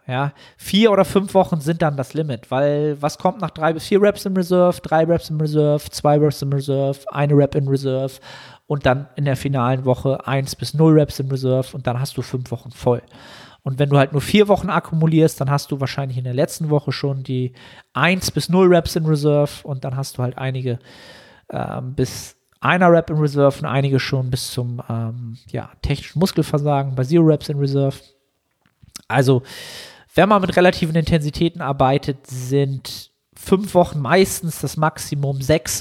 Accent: German